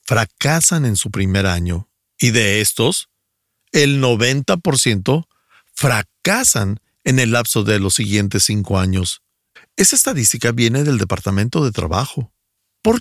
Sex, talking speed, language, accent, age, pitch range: male, 125 wpm, Spanish, Mexican, 50-69, 100-145 Hz